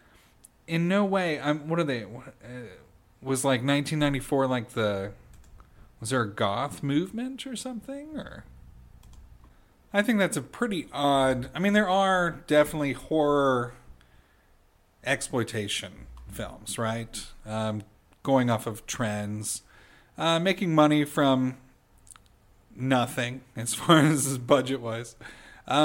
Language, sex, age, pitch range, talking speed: English, male, 40-59, 120-175 Hz, 115 wpm